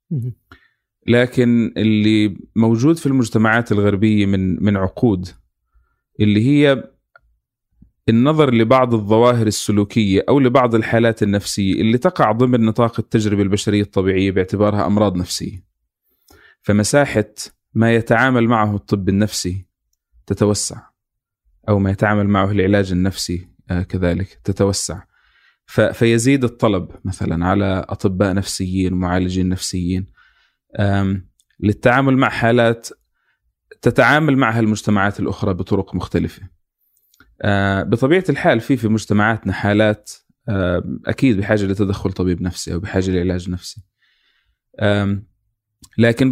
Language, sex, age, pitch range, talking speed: Arabic, male, 30-49, 95-115 Hz, 100 wpm